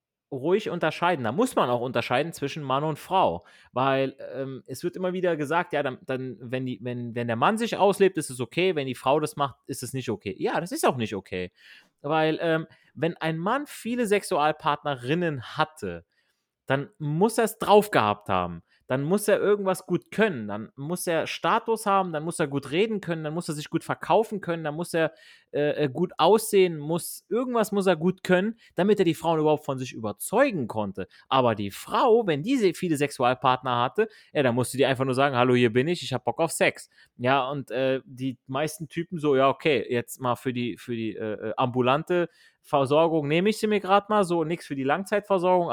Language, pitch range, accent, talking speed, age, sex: German, 130-175 Hz, German, 210 wpm, 30-49, male